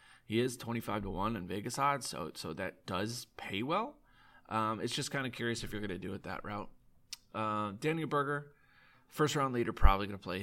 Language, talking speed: English, 205 wpm